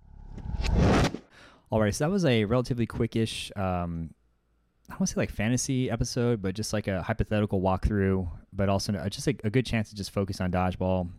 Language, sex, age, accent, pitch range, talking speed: English, male, 20-39, American, 90-105 Hz, 190 wpm